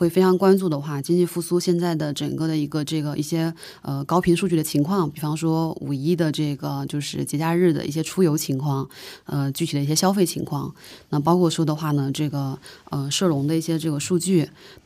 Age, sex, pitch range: 20-39, female, 150-180 Hz